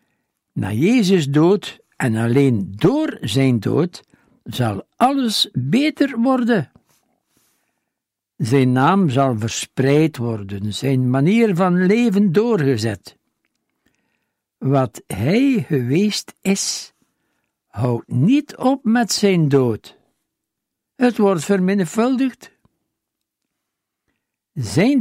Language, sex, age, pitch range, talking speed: Dutch, male, 60-79, 125-205 Hz, 85 wpm